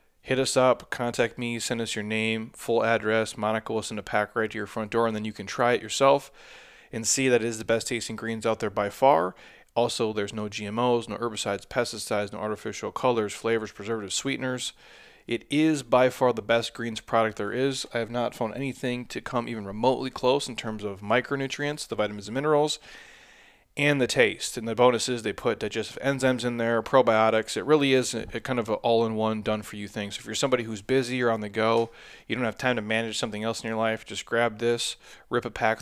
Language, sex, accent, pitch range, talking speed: English, male, American, 110-125 Hz, 225 wpm